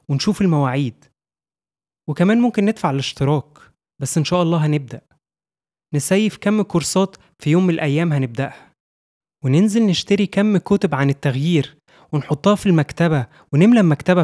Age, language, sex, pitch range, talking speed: 20-39, Arabic, male, 140-180 Hz, 120 wpm